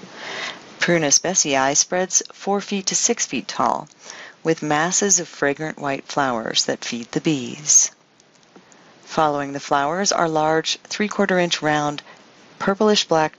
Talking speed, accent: 120 wpm, American